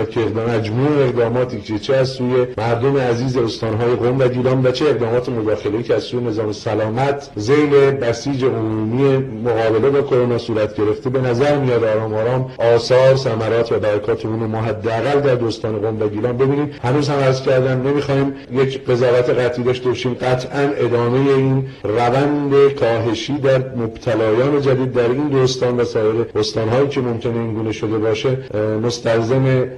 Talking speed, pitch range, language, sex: 155 wpm, 115-135 Hz, Persian, male